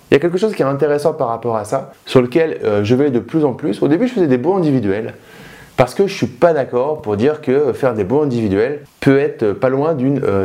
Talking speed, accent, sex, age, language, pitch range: 265 wpm, French, male, 20-39, French, 120-160 Hz